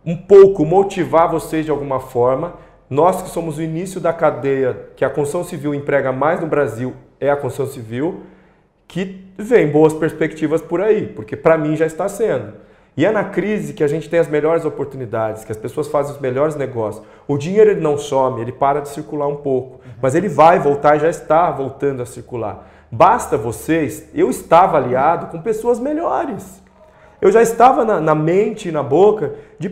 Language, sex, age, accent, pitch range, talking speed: Portuguese, male, 40-59, Brazilian, 140-180 Hz, 190 wpm